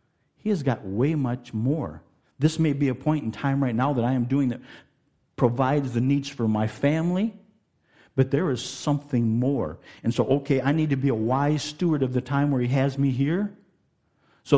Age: 50-69